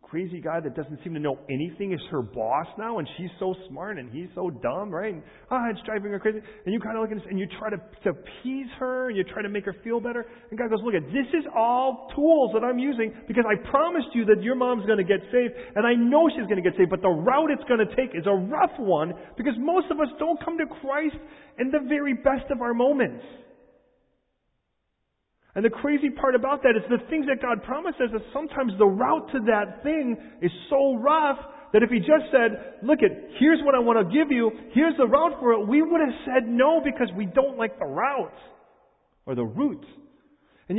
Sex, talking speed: male, 235 wpm